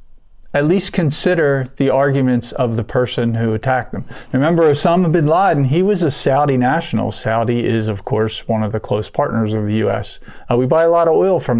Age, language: 40-59, English